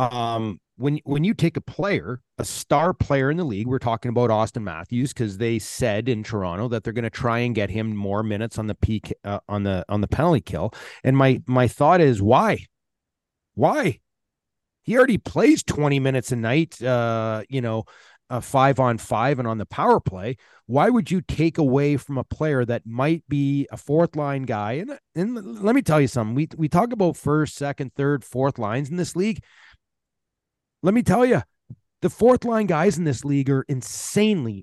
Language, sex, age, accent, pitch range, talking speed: English, male, 30-49, American, 115-150 Hz, 200 wpm